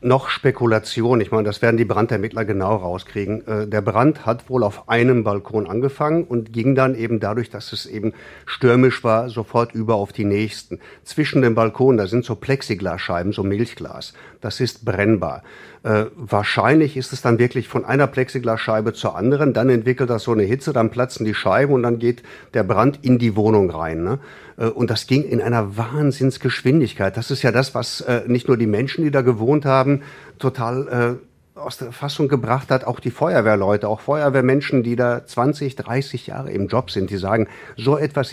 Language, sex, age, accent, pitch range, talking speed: German, male, 50-69, German, 110-135 Hz, 190 wpm